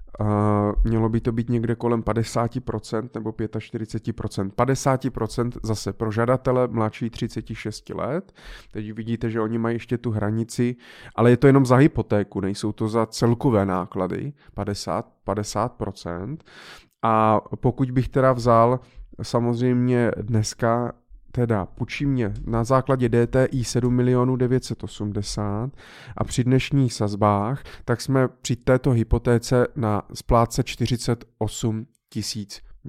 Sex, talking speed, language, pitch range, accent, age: male, 115 wpm, Czech, 110-130 Hz, native, 30-49